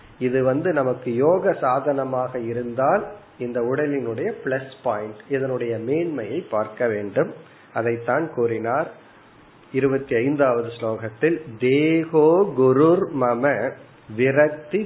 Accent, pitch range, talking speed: native, 125-160 Hz, 85 wpm